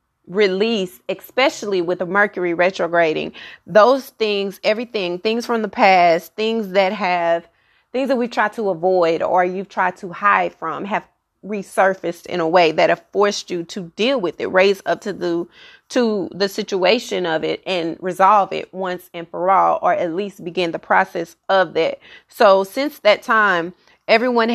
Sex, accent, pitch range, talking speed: female, American, 175-205 Hz, 170 wpm